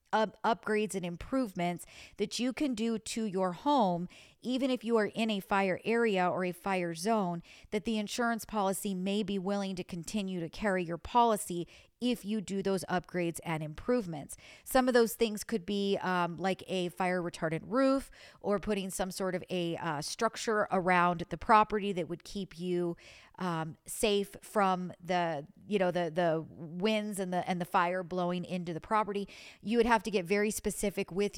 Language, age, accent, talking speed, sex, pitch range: English, 40-59, American, 180 wpm, female, 175-210 Hz